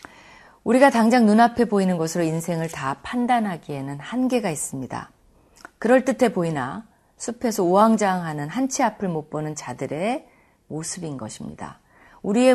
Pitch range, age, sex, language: 155-230 Hz, 40-59, female, Korean